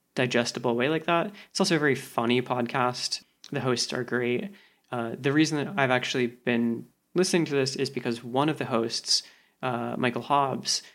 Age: 20-39